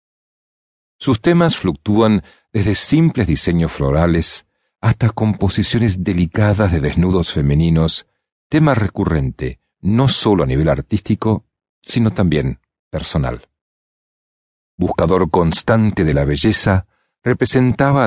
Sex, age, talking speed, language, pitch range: male, 50-69, 95 wpm, Spanish, 80-110 Hz